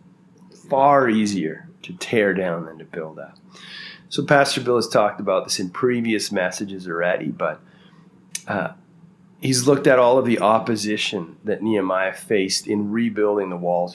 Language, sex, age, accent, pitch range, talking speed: English, male, 30-49, American, 105-165 Hz, 155 wpm